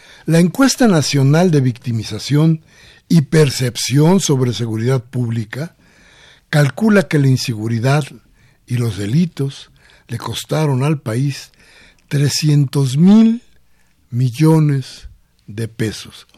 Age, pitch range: 60-79, 120-160 Hz